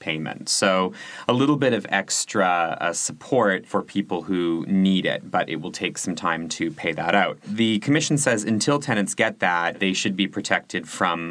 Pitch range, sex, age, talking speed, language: 90-110 Hz, male, 30-49, 190 wpm, English